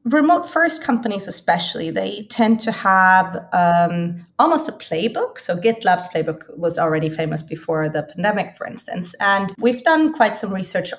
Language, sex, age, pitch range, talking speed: English, female, 30-49, 175-220 Hz, 155 wpm